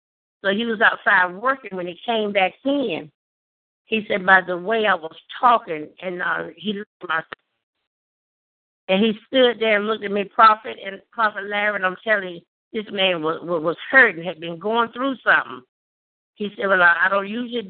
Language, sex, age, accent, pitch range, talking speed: English, female, 60-79, American, 185-235 Hz, 185 wpm